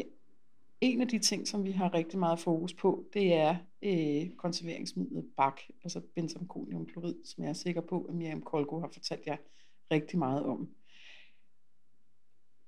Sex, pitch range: female, 165-215 Hz